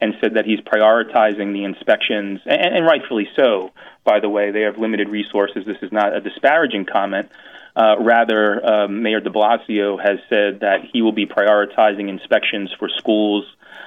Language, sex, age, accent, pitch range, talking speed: English, male, 30-49, American, 105-115 Hz, 170 wpm